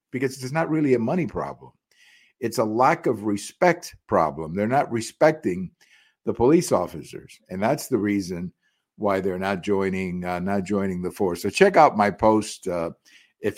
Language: English